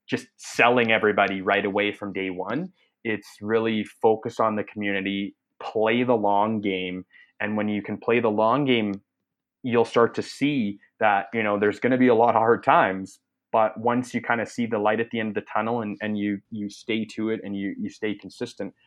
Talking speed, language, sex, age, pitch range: 215 wpm, English, male, 20-39, 100-115 Hz